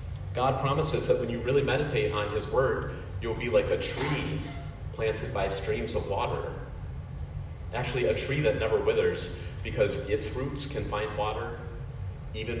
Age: 30-49